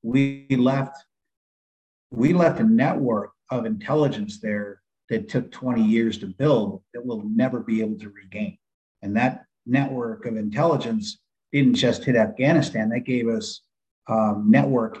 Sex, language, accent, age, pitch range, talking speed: male, English, American, 50-69, 115-185 Hz, 150 wpm